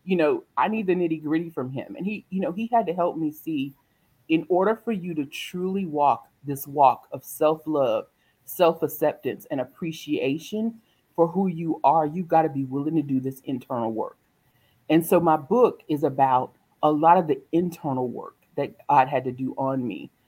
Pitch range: 130-165 Hz